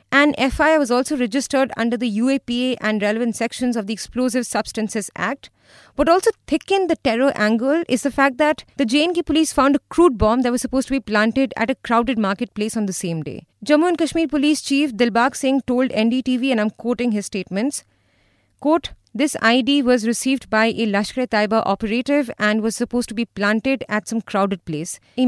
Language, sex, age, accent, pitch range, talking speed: English, female, 30-49, Indian, 220-280 Hz, 190 wpm